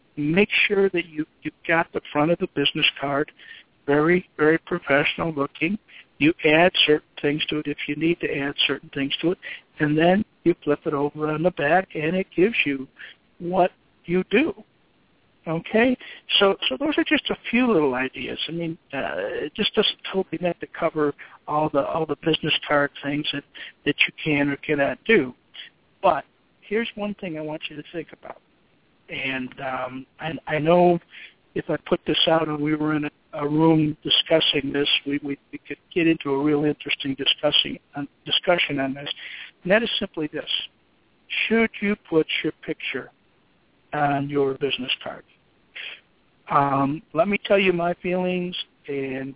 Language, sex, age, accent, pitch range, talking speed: English, male, 60-79, American, 145-175 Hz, 175 wpm